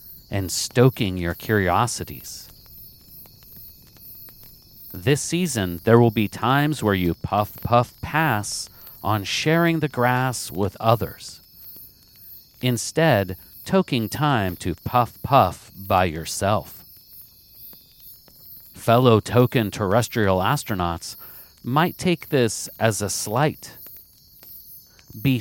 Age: 40-59